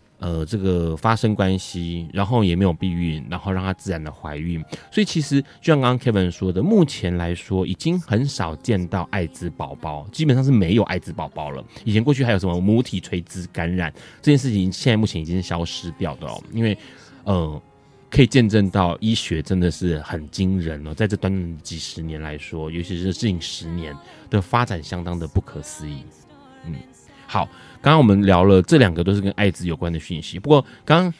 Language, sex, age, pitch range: Chinese, male, 20-39, 85-115 Hz